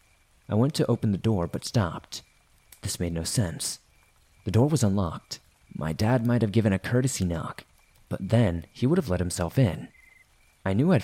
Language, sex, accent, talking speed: English, male, American, 190 wpm